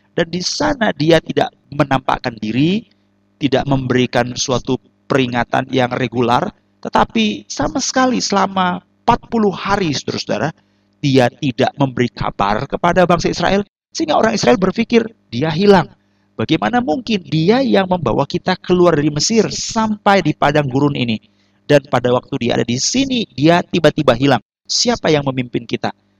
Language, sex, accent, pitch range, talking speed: Indonesian, male, native, 120-175 Hz, 140 wpm